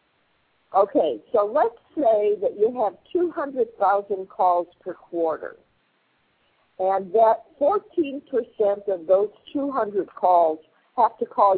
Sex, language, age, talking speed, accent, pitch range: female, English, 50-69, 110 wpm, American, 180-285 Hz